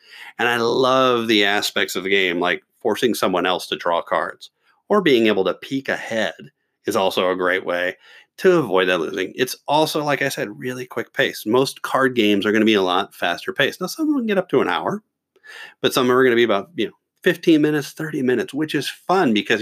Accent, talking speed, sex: American, 230 wpm, male